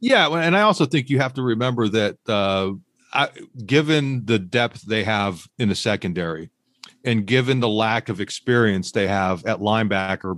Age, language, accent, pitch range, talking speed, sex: 40-59, English, American, 105-130 Hz, 175 wpm, male